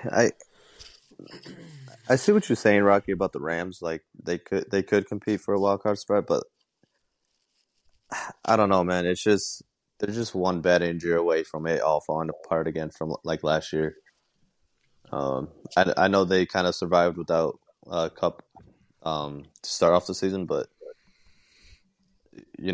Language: English